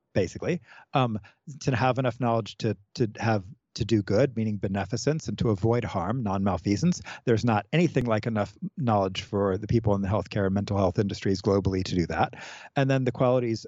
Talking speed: 190 wpm